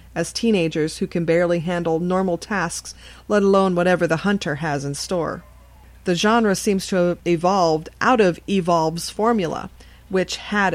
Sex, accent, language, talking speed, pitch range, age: female, American, English, 155 wpm, 165-200 Hz, 40-59